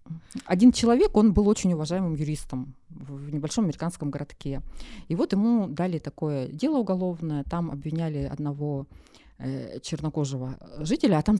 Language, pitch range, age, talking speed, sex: Russian, 145-205 Hz, 20-39, 130 wpm, female